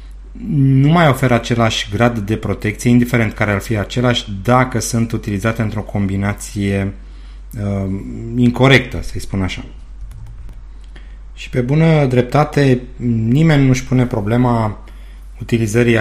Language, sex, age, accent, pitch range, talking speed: Romanian, male, 30-49, native, 105-125 Hz, 115 wpm